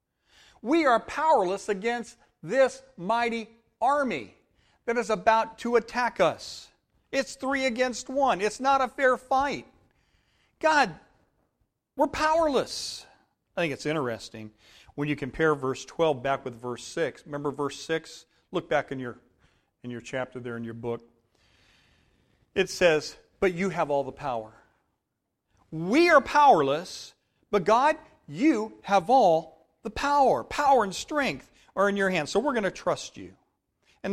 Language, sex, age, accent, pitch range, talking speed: English, male, 40-59, American, 135-215 Hz, 150 wpm